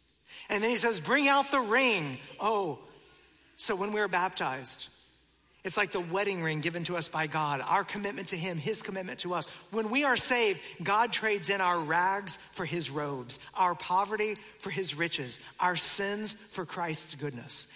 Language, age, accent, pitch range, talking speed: English, 50-69, American, 165-235 Hz, 180 wpm